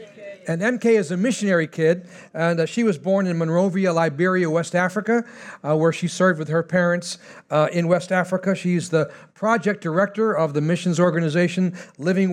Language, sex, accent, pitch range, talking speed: English, male, American, 165-205 Hz, 175 wpm